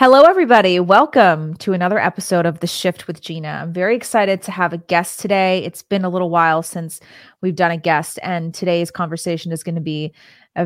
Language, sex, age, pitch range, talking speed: English, female, 30-49, 165-190 Hz, 210 wpm